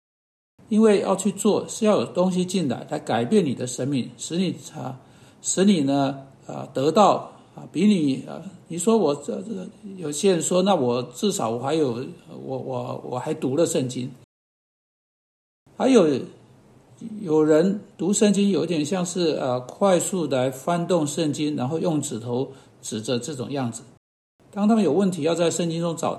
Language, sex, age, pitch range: Chinese, male, 60-79, 135-180 Hz